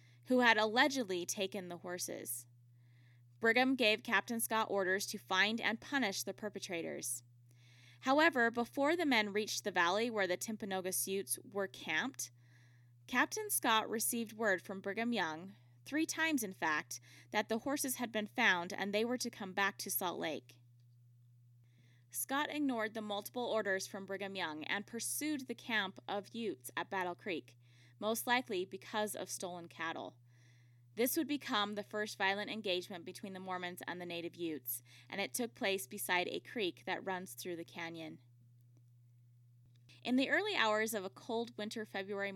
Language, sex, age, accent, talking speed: English, female, 10-29, American, 160 wpm